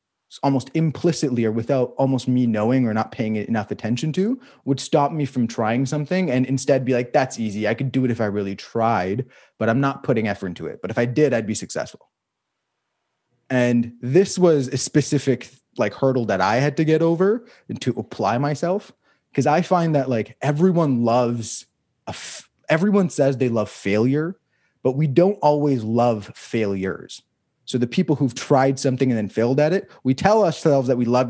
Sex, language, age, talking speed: male, English, 20-39, 190 wpm